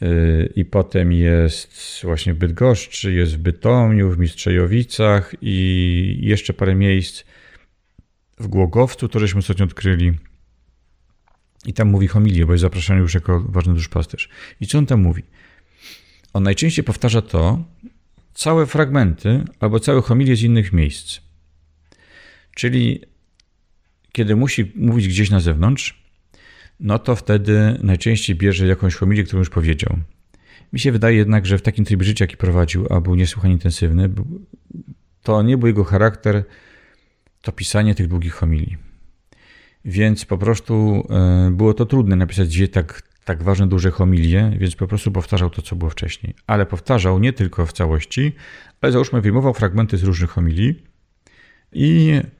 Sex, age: male, 40-59